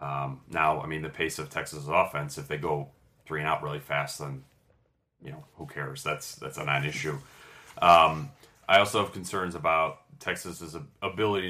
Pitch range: 80-105 Hz